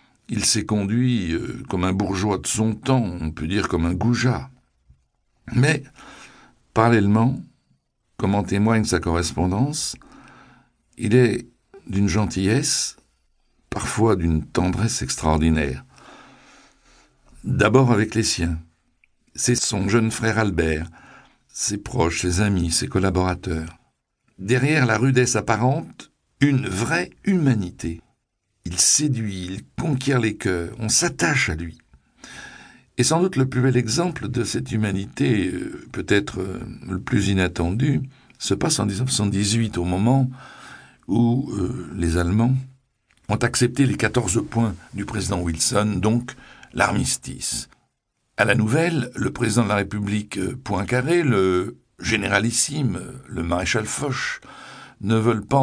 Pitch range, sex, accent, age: 95-125 Hz, male, French, 60-79